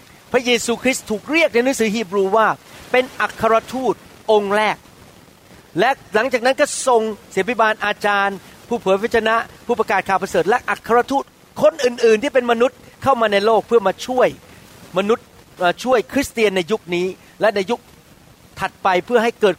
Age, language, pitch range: 30-49, Thai, 195-245 Hz